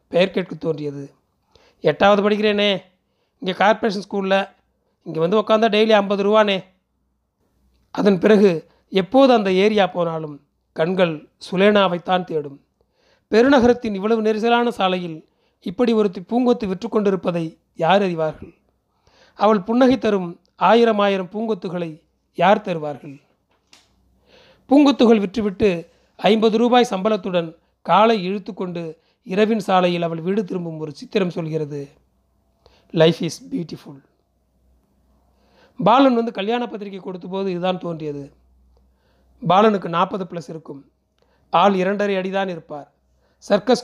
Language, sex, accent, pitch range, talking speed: Tamil, male, native, 160-215 Hz, 105 wpm